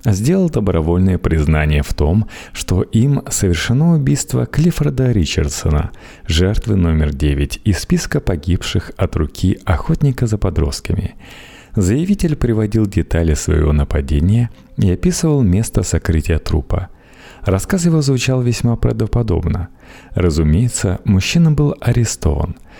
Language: Russian